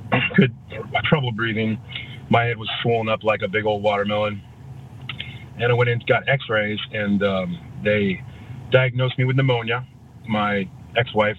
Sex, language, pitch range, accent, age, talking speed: male, English, 105-125 Hz, American, 30-49, 150 wpm